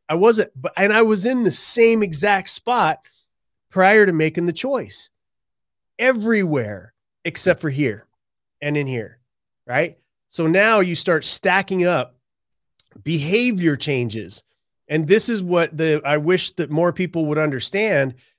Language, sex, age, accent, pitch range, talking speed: English, male, 30-49, American, 145-185 Hz, 145 wpm